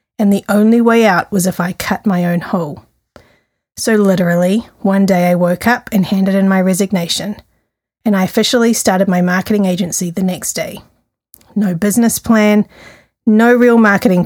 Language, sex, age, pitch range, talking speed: English, female, 30-49, 180-220 Hz, 170 wpm